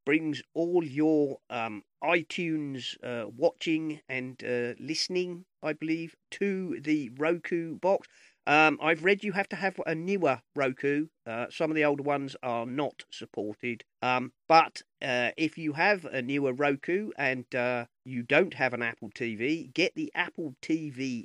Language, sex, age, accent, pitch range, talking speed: English, male, 40-59, British, 125-165 Hz, 160 wpm